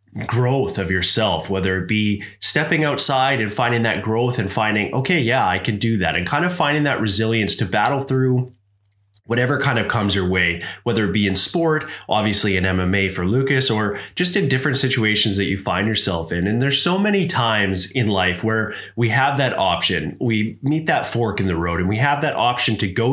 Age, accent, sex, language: 20-39, American, male, English